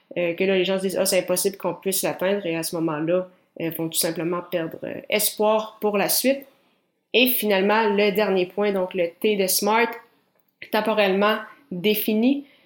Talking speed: 195 wpm